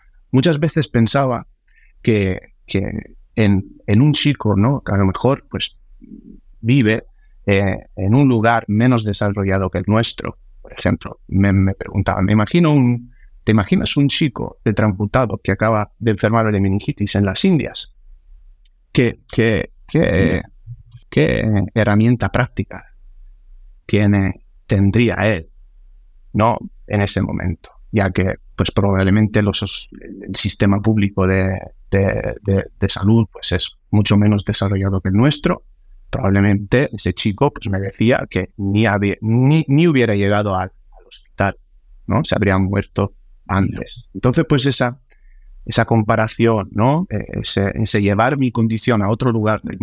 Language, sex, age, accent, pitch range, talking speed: Spanish, male, 30-49, Spanish, 95-120 Hz, 140 wpm